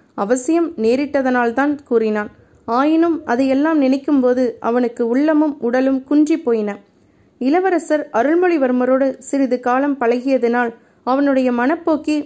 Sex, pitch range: female, 240-290 Hz